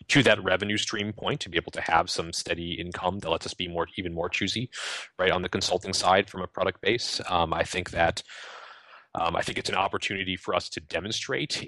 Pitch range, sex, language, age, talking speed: 90-100 Hz, male, English, 30-49, 225 wpm